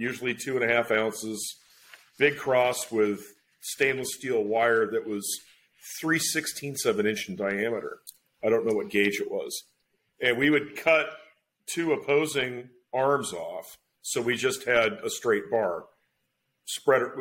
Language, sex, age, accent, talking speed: English, male, 40-59, American, 150 wpm